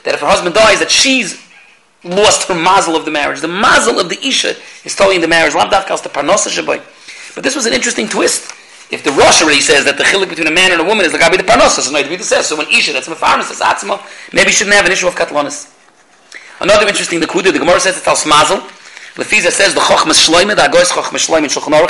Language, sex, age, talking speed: English, male, 30-49, 245 wpm